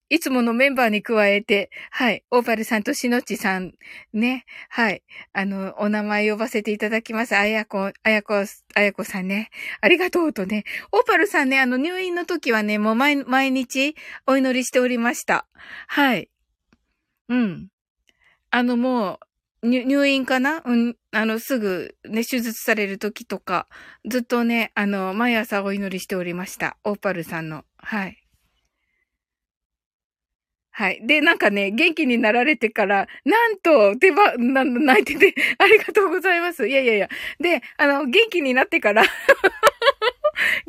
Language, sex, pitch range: Japanese, female, 210-320 Hz